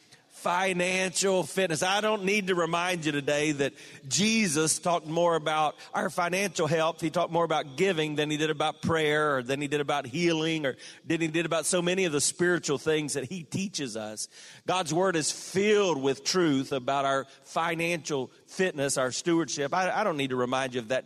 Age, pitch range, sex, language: 40-59, 155-200 Hz, male, English